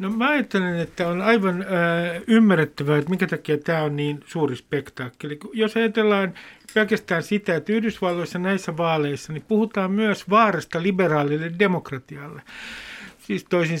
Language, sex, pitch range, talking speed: Finnish, male, 150-200 Hz, 125 wpm